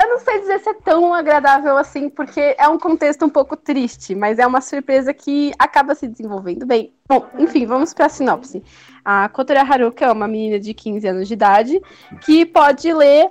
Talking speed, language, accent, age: 205 wpm, Portuguese, Brazilian, 10-29